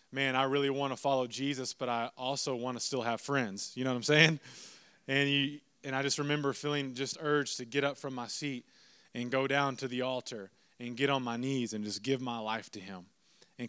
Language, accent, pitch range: English, American, 125-150 Hz